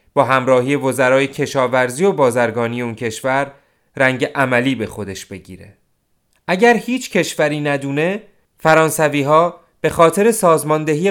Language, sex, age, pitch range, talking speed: Persian, male, 30-49, 130-170 Hz, 120 wpm